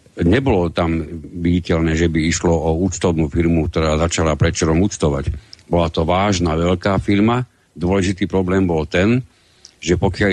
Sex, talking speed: male, 140 wpm